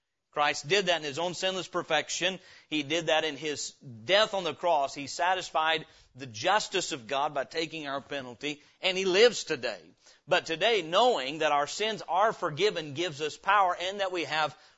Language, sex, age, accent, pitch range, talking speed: English, male, 40-59, American, 155-205 Hz, 185 wpm